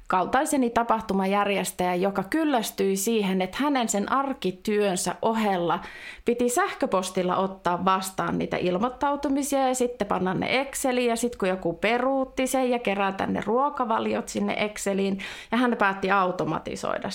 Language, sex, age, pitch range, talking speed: Finnish, female, 30-49, 185-240 Hz, 130 wpm